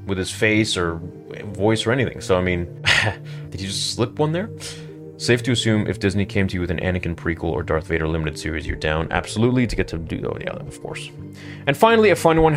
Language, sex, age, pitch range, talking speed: English, male, 30-49, 85-110 Hz, 235 wpm